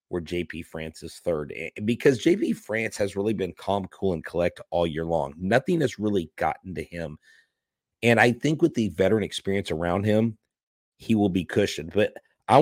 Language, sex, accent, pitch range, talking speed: English, male, American, 95-120 Hz, 175 wpm